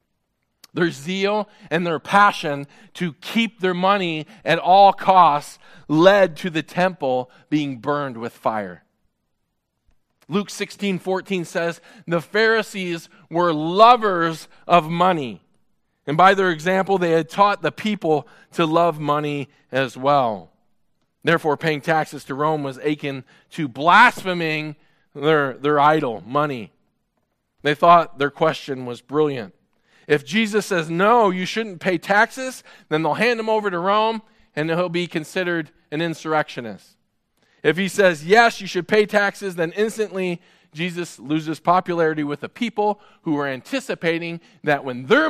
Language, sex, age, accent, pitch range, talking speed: English, male, 40-59, American, 150-190 Hz, 140 wpm